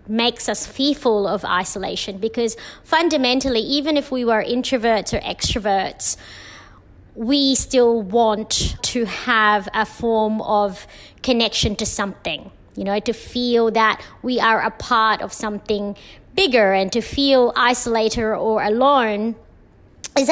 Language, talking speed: English, 130 wpm